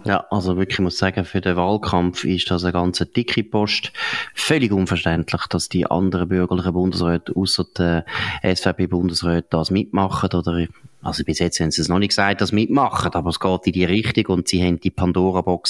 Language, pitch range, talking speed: German, 90-115 Hz, 190 wpm